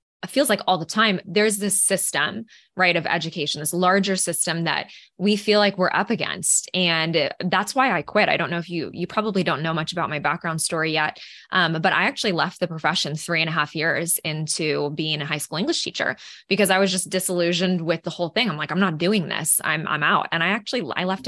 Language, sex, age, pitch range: English, female, 20-39, 165-200 Hz